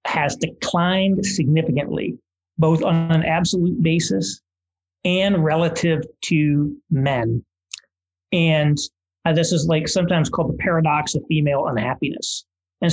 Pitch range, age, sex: 130-165 Hz, 40-59, male